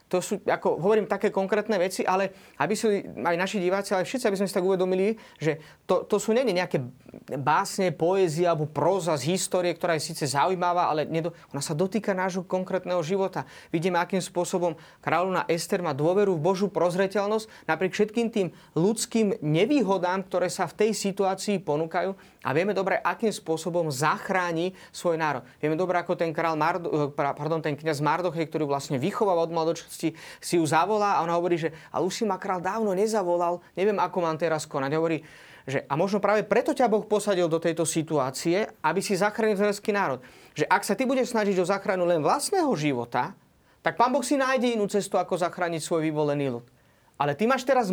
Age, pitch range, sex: 30-49, 160-205 Hz, male